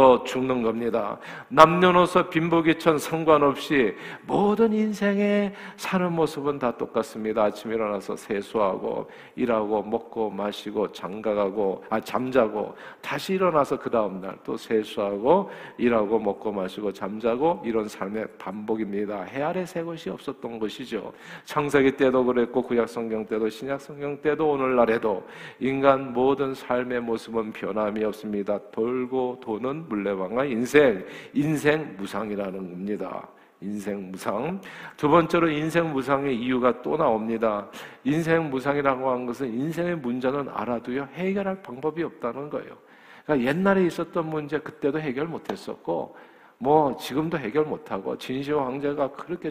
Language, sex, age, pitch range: Korean, male, 50-69, 110-155 Hz